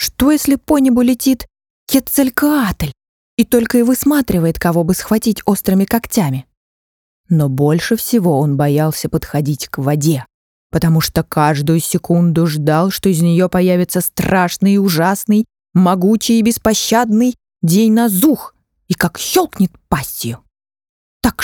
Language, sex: Russian, female